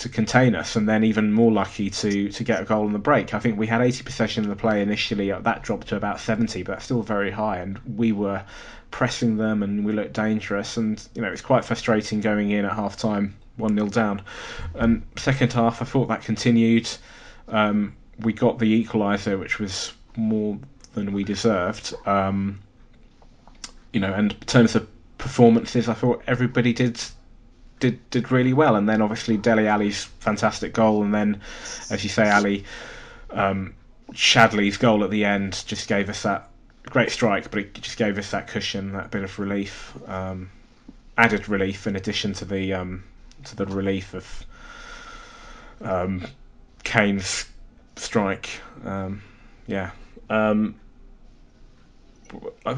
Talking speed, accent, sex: 165 wpm, British, male